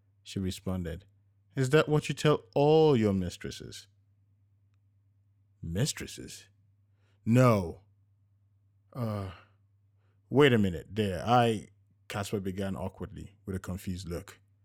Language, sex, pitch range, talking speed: English, male, 100-115 Hz, 100 wpm